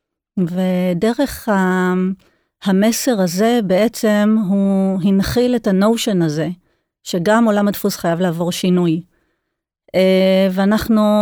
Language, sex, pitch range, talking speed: Hebrew, female, 185-220 Hz, 85 wpm